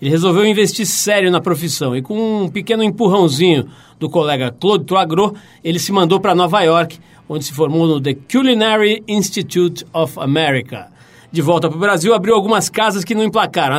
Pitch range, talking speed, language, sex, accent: 160-205 Hz, 180 wpm, Portuguese, male, Brazilian